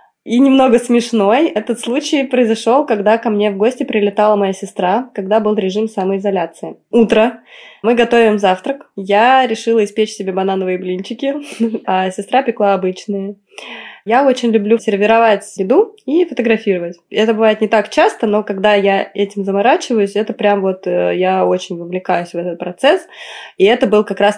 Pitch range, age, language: 195-230 Hz, 20-39, Russian